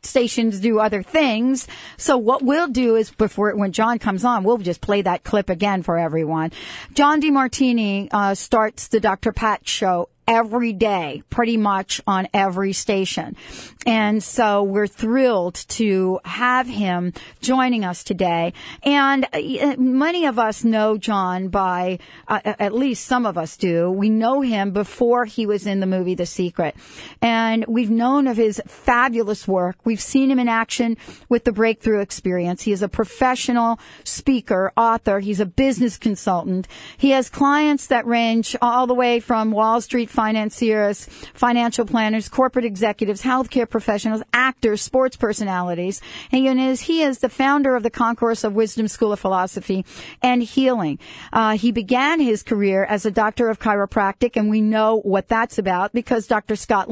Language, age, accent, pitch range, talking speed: English, 50-69, American, 200-245 Hz, 160 wpm